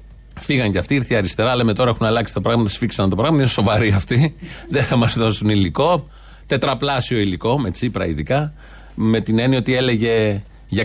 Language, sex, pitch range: Greek, male, 110-145 Hz